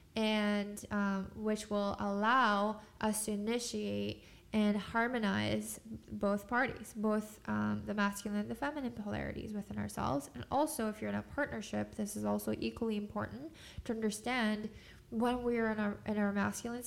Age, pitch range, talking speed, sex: 10-29, 200-230 Hz, 155 wpm, female